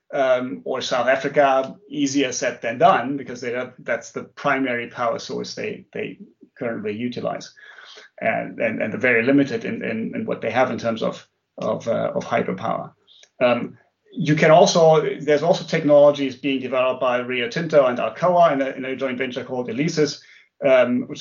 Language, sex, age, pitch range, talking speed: English, male, 30-49, 125-150 Hz, 180 wpm